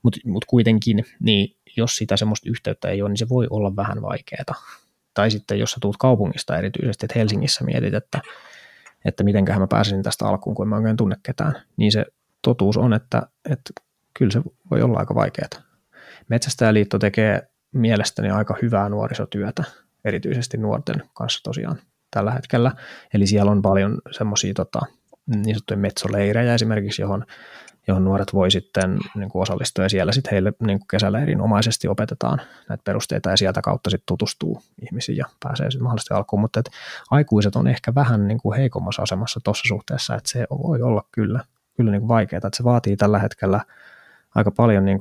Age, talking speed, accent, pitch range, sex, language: 20-39, 170 wpm, native, 100-120 Hz, male, Finnish